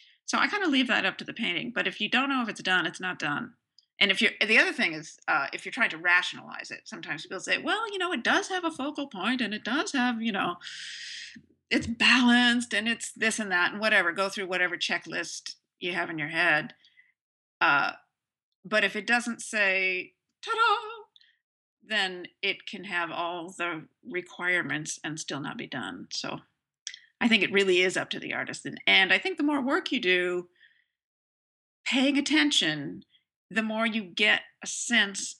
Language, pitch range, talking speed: English, 180-260 Hz, 195 wpm